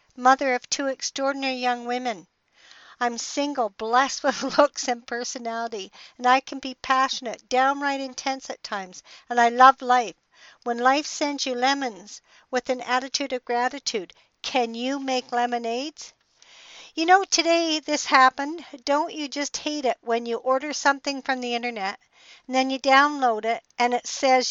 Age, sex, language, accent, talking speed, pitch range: 60-79, female, English, American, 160 wpm, 240-290 Hz